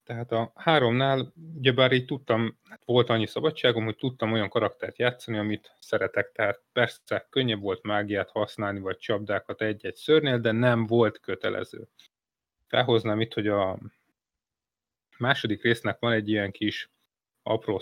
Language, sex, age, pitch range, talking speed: Hungarian, male, 30-49, 105-130 Hz, 140 wpm